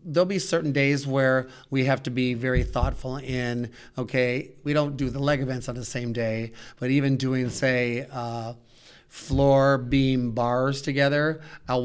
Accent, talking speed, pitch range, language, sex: American, 165 wpm, 125-135 Hz, English, male